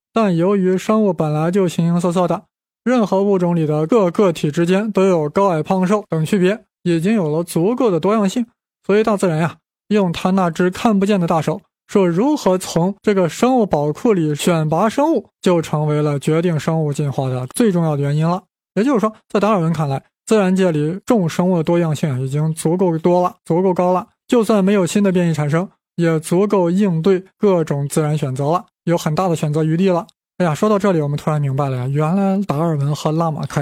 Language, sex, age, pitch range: Chinese, male, 20-39, 160-200 Hz